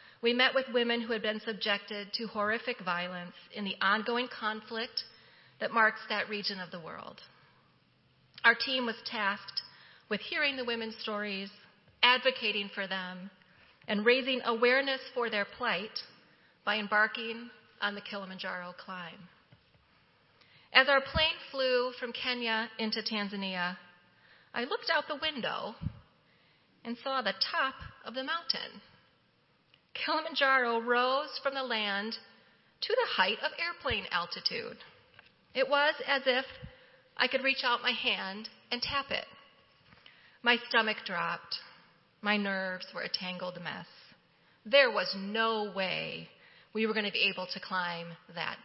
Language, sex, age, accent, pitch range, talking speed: English, female, 30-49, American, 200-255 Hz, 140 wpm